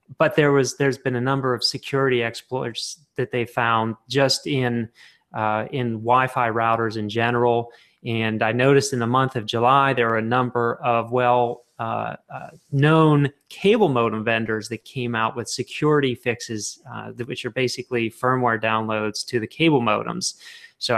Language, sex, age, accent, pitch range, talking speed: English, male, 30-49, American, 110-125 Hz, 165 wpm